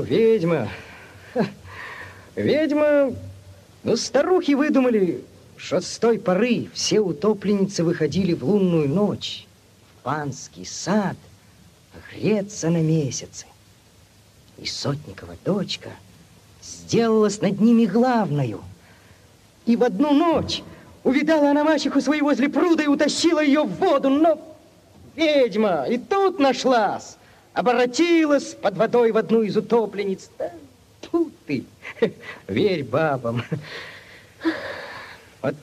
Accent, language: native, Russian